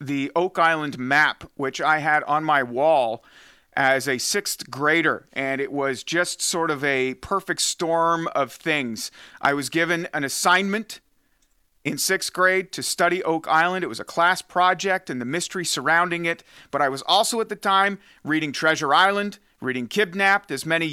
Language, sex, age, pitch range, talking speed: English, male, 40-59, 145-180 Hz, 175 wpm